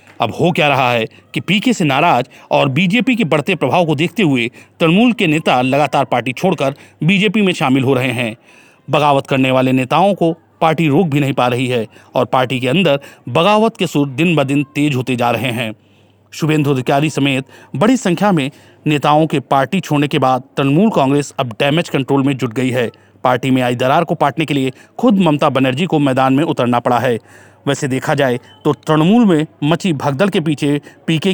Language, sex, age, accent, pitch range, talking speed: Hindi, male, 40-59, native, 130-170 Hz, 200 wpm